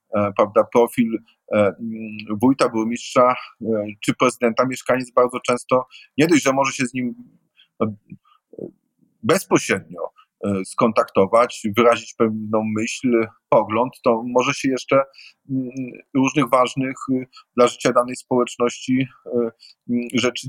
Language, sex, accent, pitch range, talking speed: Polish, male, native, 115-140 Hz, 95 wpm